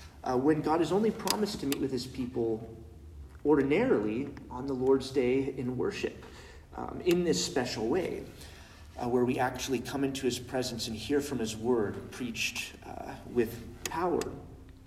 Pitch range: 110-135 Hz